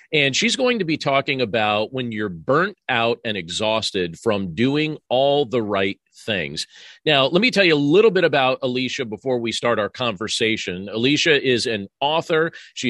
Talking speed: 180 wpm